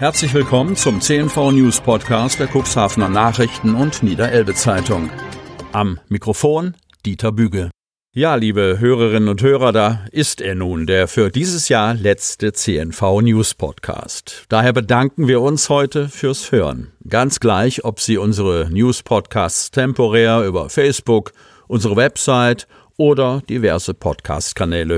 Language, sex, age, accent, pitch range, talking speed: German, male, 50-69, German, 95-130 Hz, 125 wpm